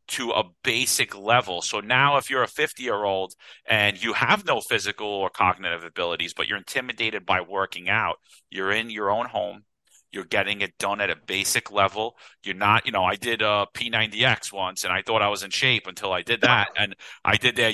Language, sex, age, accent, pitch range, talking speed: English, male, 40-59, American, 100-115 Hz, 215 wpm